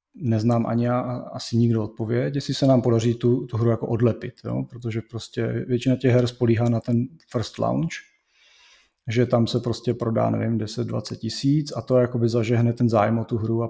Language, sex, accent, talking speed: Czech, male, native, 195 wpm